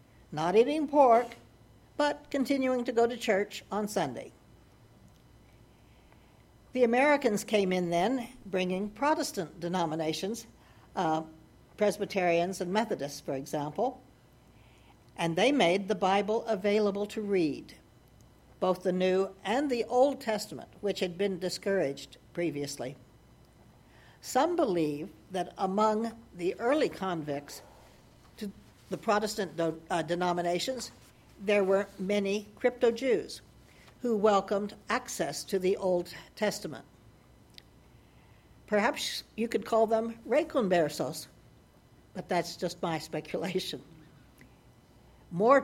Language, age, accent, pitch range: English, 60-79, American, 165-225 Hz